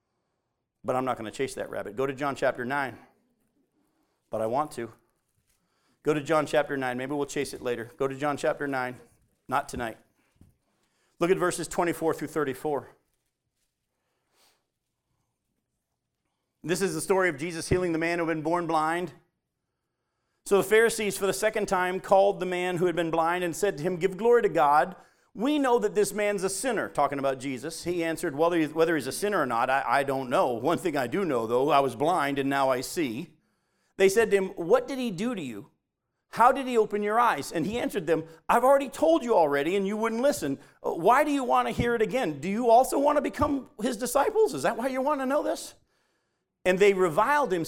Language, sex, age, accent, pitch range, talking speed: English, male, 40-59, American, 150-220 Hz, 210 wpm